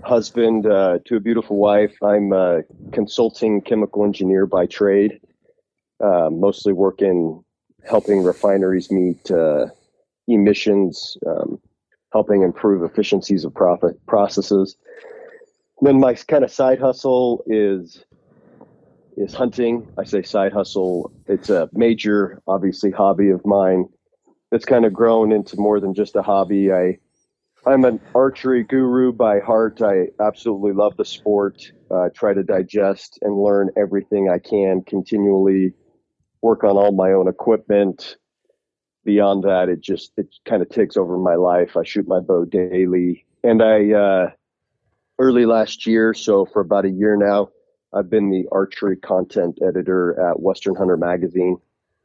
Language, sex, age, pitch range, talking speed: English, male, 40-59, 95-115 Hz, 145 wpm